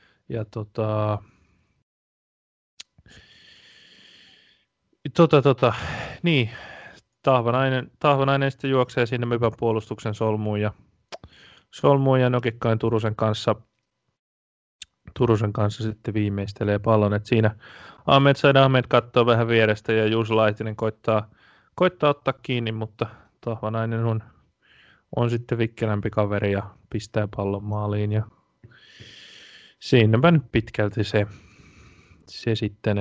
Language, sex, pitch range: Finnish, male, 110-125 Hz